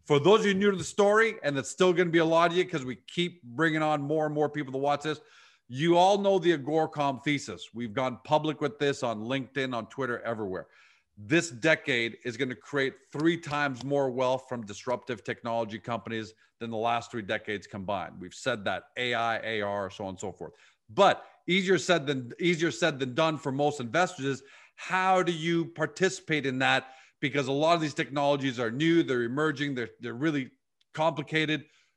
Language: English